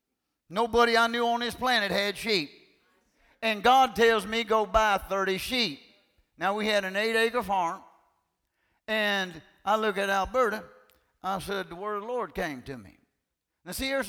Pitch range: 180-230 Hz